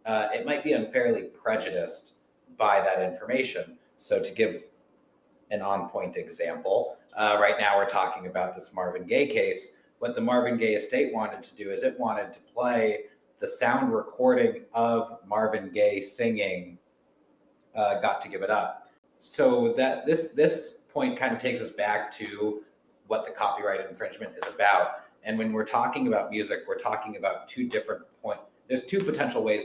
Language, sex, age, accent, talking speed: English, male, 30-49, American, 170 wpm